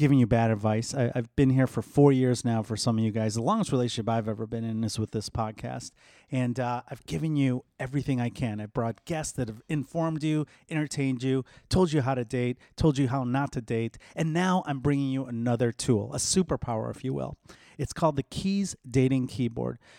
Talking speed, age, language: 220 wpm, 30-49, English